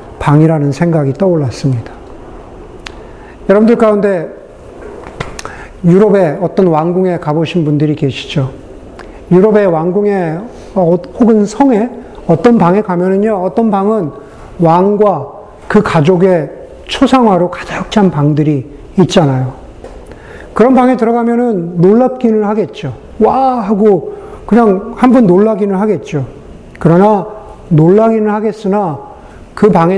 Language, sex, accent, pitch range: Korean, male, native, 155-215 Hz